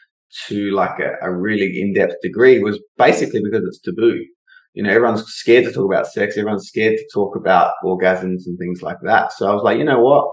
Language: English